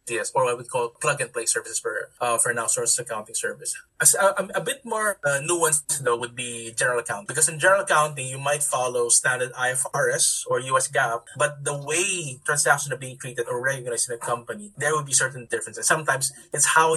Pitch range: 130-210 Hz